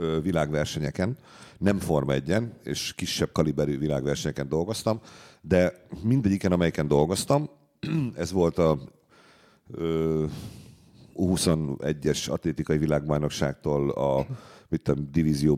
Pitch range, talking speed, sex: 75-95 Hz, 80 wpm, male